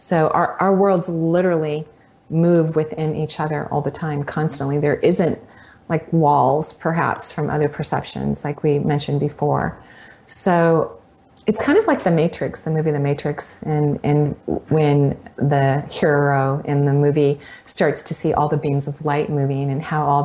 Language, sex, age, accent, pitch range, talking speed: English, female, 30-49, American, 145-165 Hz, 165 wpm